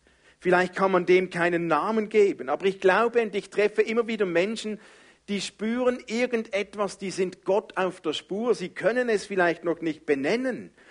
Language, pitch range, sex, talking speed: German, 145-215 Hz, male, 175 wpm